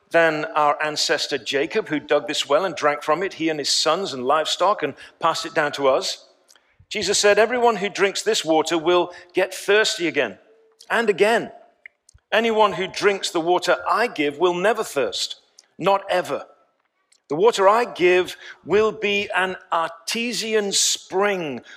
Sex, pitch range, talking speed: male, 175-235 Hz, 160 wpm